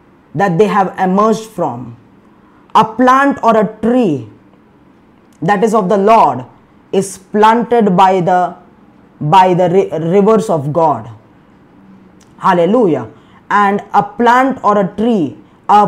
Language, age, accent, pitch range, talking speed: English, 20-39, Indian, 200-240 Hz, 120 wpm